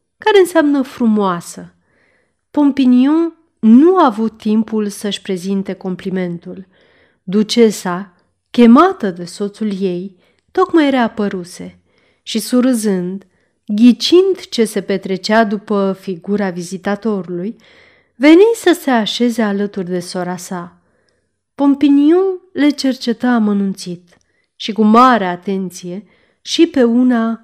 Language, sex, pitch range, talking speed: Romanian, female, 190-270 Hz, 100 wpm